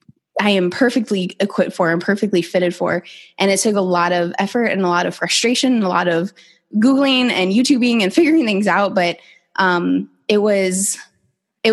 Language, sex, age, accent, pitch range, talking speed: English, female, 20-39, American, 180-215 Hz, 190 wpm